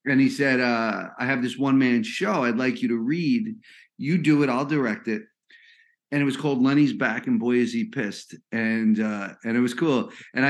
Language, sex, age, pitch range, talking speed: English, male, 40-59, 115-150 Hz, 215 wpm